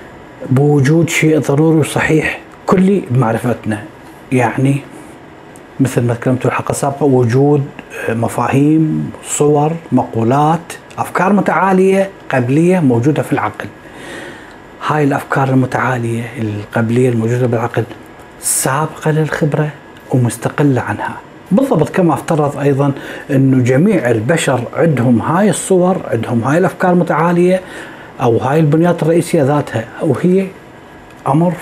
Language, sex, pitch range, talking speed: Arabic, male, 125-165 Hz, 100 wpm